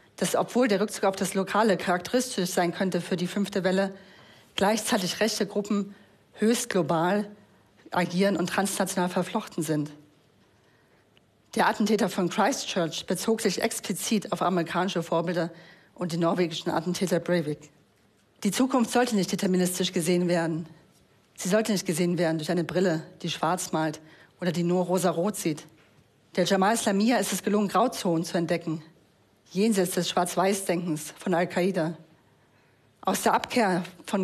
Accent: German